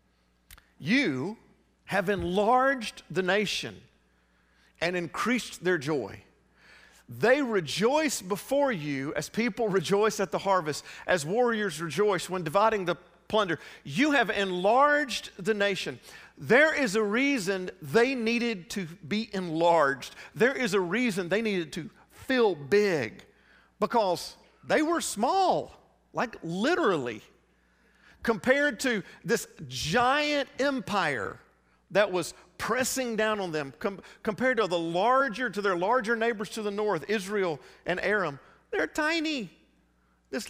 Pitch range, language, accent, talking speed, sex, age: 150-245 Hz, English, American, 125 wpm, male, 50-69